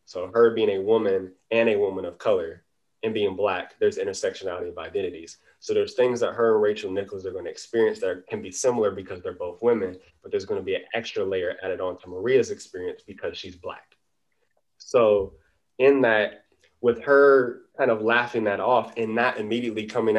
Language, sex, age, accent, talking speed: English, male, 20-39, American, 200 wpm